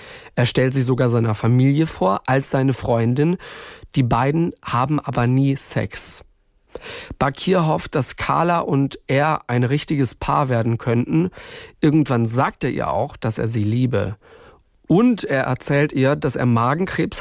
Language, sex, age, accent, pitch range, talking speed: German, male, 40-59, German, 120-150 Hz, 150 wpm